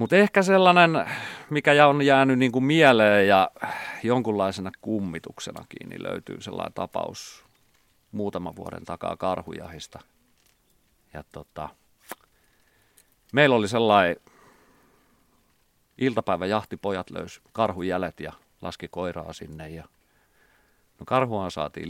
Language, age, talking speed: Finnish, 40-59, 100 wpm